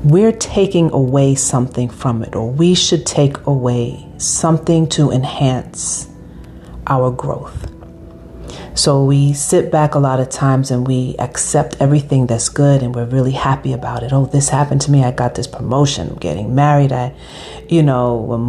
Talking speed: 170 wpm